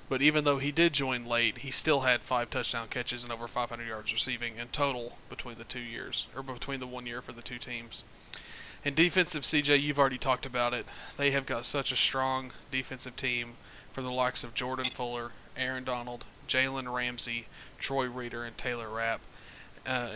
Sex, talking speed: male, 195 wpm